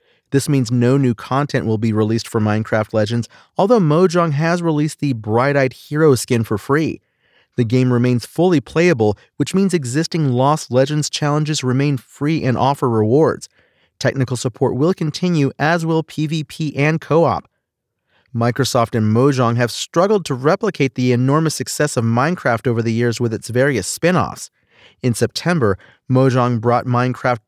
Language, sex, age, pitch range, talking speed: English, male, 40-59, 125-155 Hz, 160 wpm